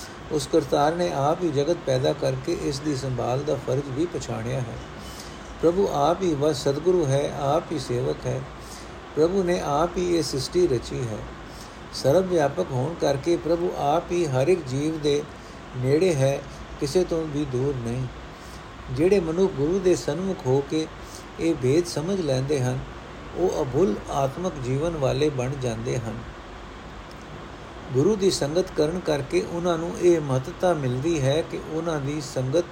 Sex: male